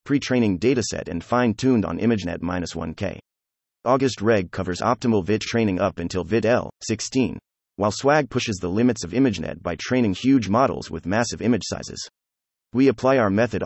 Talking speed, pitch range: 155 wpm, 85-120 Hz